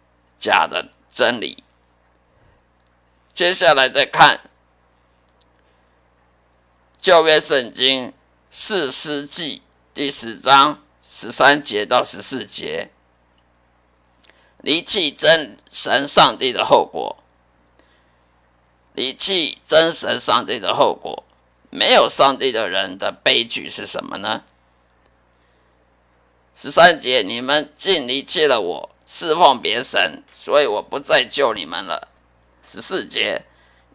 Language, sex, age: Chinese, male, 50-69